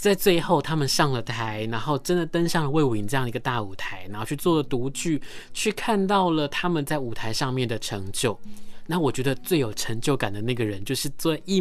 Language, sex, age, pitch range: Chinese, male, 20-39, 125-165 Hz